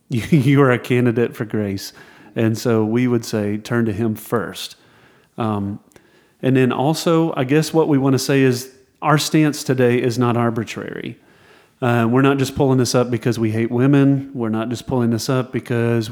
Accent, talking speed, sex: American, 190 wpm, male